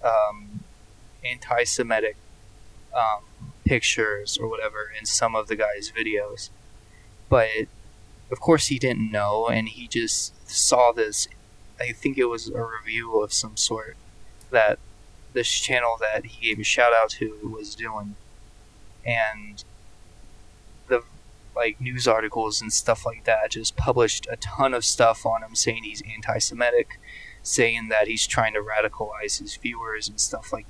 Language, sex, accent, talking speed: English, male, American, 145 wpm